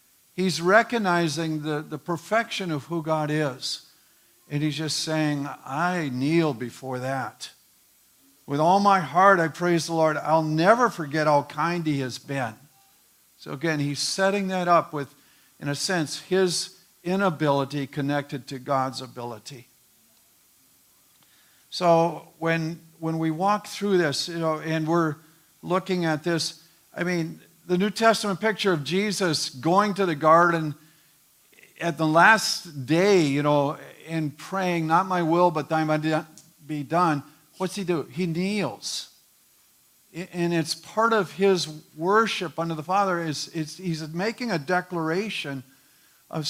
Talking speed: 145 wpm